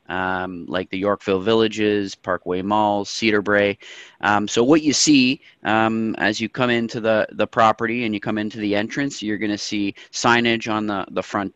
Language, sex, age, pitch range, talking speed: English, male, 30-49, 95-110 Hz, 185 wpm